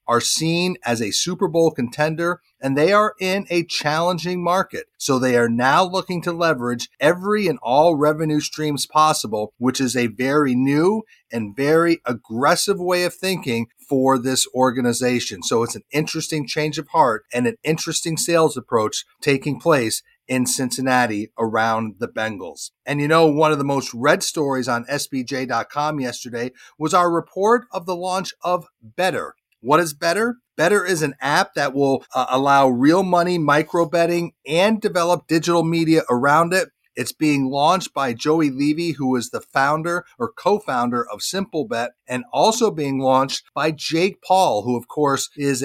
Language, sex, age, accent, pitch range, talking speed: English, male, 40-59, American, 130-170 Hz, 165 wpm